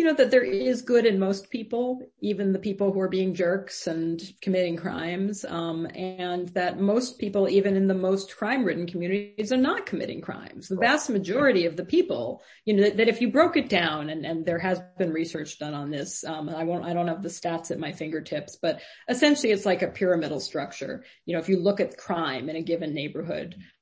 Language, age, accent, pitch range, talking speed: English, 40-59, American, 165-210 Hz, 220 wpm